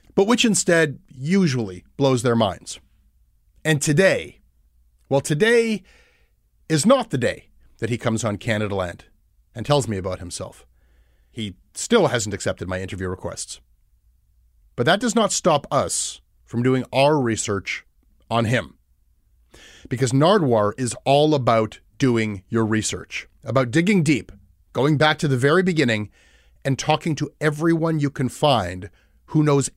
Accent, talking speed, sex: American, 145 wpm, male